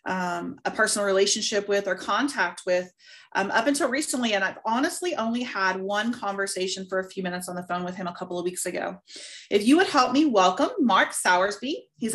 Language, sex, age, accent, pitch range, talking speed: English, female, 30-49, American, 190-280 Hz, 205 wpm